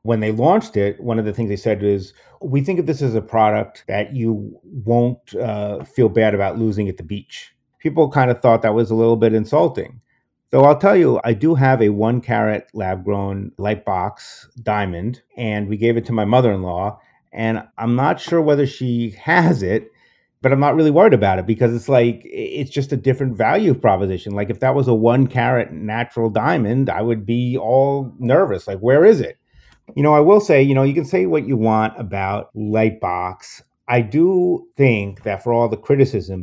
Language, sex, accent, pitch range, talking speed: English, male, American, 100-125 Hz, 210 wpm